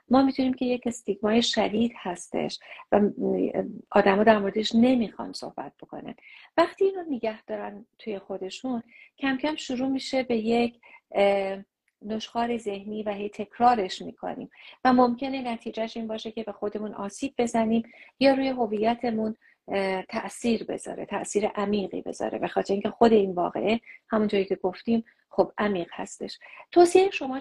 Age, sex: 40-59, female